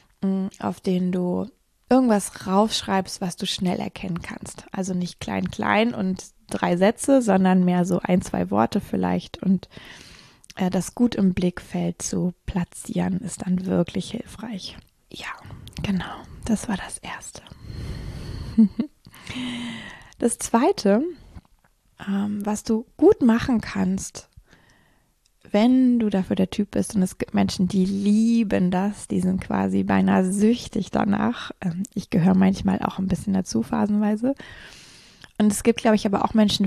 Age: 20-39